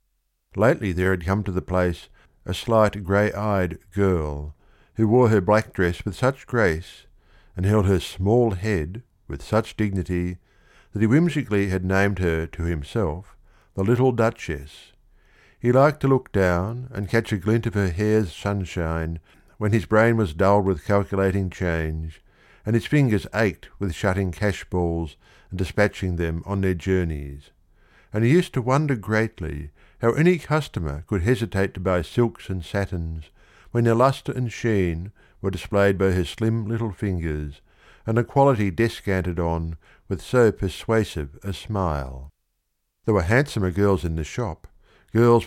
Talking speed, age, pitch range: 155 wpm, 60-79, 90-110 Hz